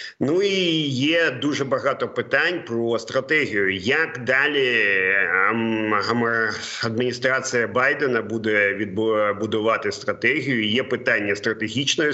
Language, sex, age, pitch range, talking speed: Ukrainian, male, 40-59, 110-145 Hz, 90 wpm